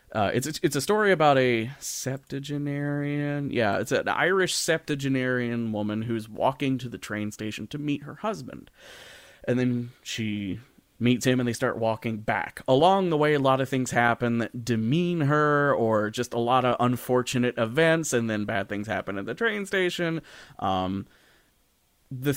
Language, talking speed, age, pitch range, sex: English, 170 wpm, 30-49, 110-135 Hz, male